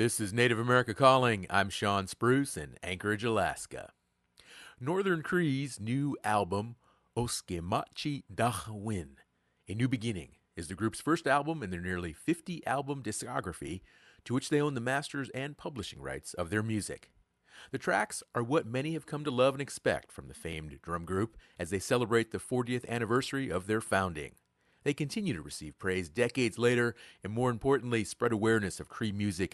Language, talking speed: English, 165 wpm